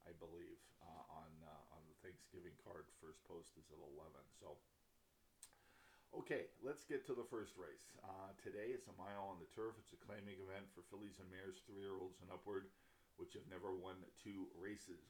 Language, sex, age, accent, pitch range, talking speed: English, male, 50-69, American, 85-100 Hz, 185 wpm